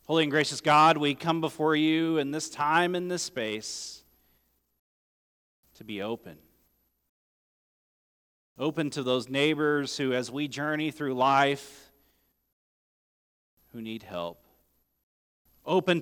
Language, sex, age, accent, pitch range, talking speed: English, male, 40-59, American, 90-150 Hz, 115 wpm